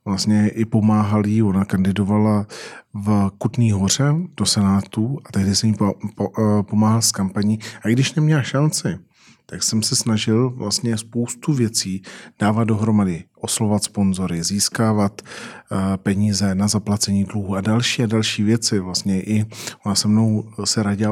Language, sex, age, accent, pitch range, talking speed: Czech, male, 40-59, native, 105-120 Hz, 145 wpm